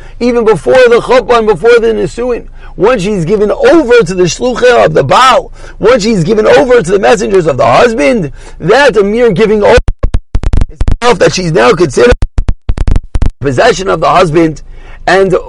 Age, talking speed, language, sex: 40-59, 165 wpm, English, male